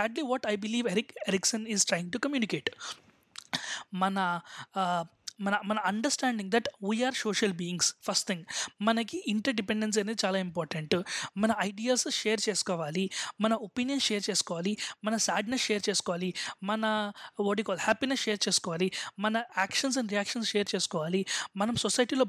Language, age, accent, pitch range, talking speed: Telugu, 20-39, native, 195-240 Hz, 145 wpm